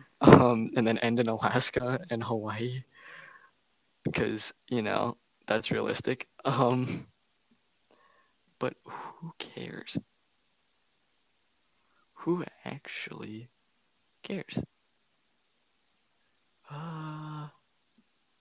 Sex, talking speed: male, 70 wpm